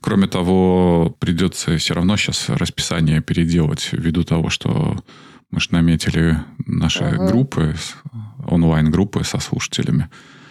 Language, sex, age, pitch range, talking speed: Russian, male, 20-39, 80-95 Hz, 110 wpm